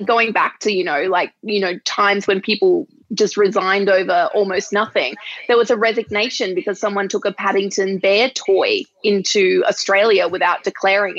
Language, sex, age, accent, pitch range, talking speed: English, female, 20-39, Australian, 200-240 Hz, 165 wpm